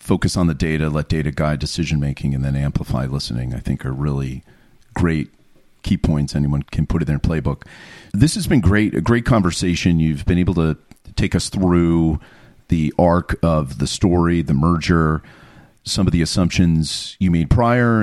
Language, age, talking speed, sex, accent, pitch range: English, 40-59, 175 wpm, male, American, 75-95 Hz